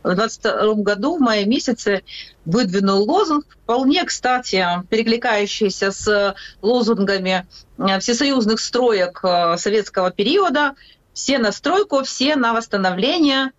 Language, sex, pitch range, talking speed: Ukrainian, female, 195-255 Hz, 105 wpm